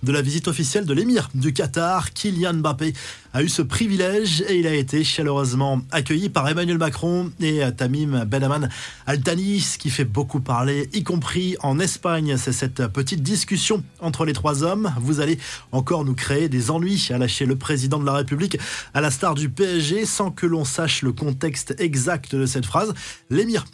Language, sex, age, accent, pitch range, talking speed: French, male, 20-39, French, 130-170 Hz, 185 wpm